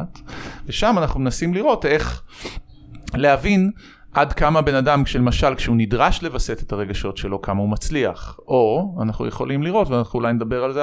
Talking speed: 160 wpm